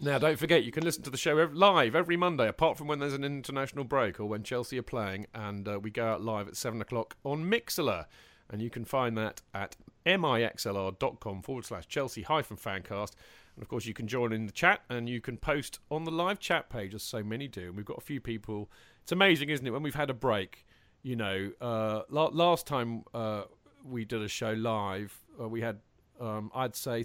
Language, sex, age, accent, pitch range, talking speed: English, male, 40-59, British, 110-145 Hz, 225 wpm